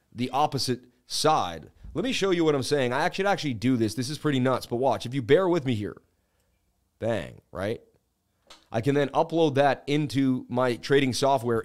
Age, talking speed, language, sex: 30-49, 195 wpm, English, male